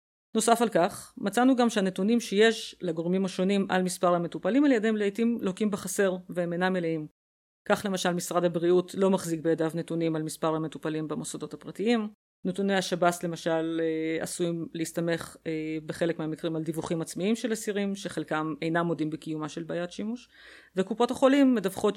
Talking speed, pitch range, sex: 155 wpm, 170-210 Hz, female